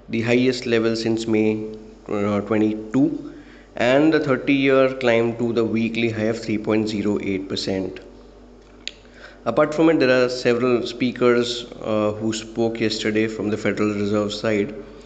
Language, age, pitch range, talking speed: English, 20-39, 105-120 Hz, 130 wpm